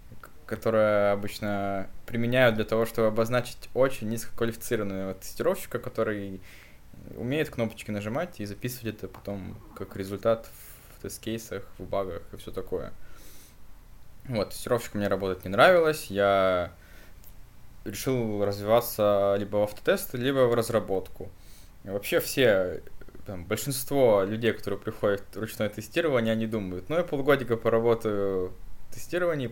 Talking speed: 125 wpm